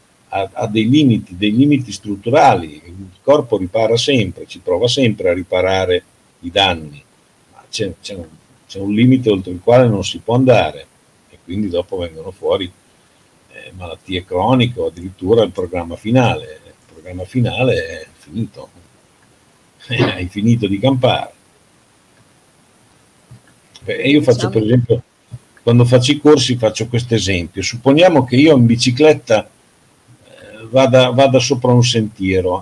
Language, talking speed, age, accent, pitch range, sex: Italian, 135 wpm, 50-69, native, 105-140 Hz, male